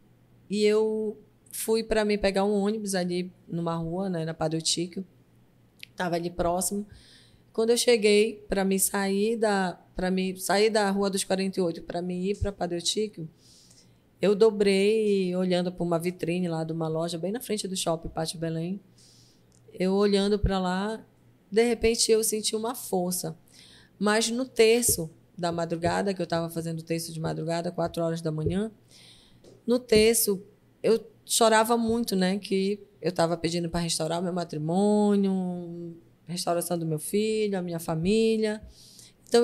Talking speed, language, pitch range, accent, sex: 160 wpm, Portuguese, 170-210 Hz, Brazilian, female